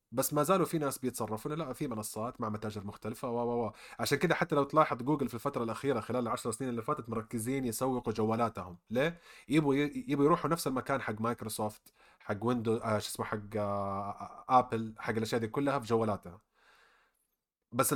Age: 30-49